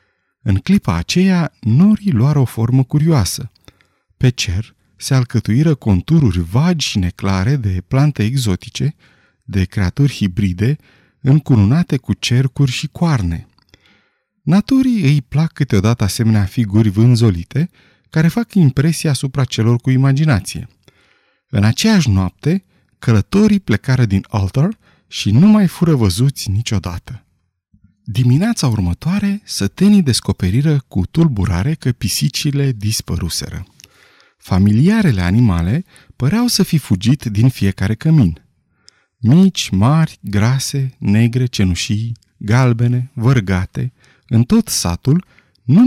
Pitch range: 100-155 Hz